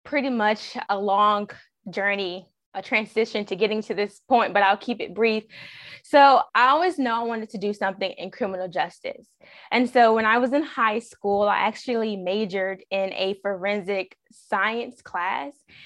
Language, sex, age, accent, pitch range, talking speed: English, female, 20-39, American, 195-230 Hz, 170 wpm